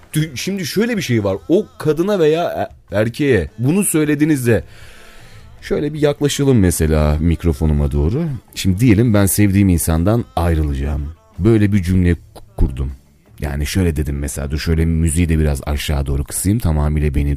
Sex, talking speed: male, 140 wpm